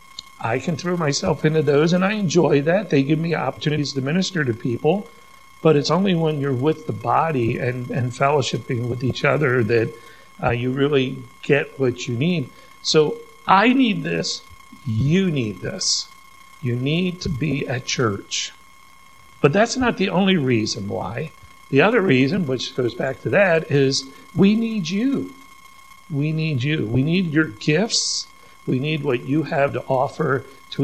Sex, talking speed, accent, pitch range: male, 170 wpm, American, 135-195 Hz